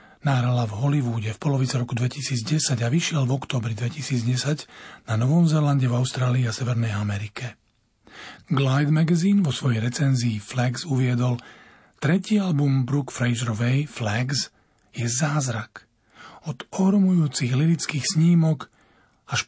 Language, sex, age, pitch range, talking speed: Slovak, male, 40-59, 120-145 Hz, 120 wpm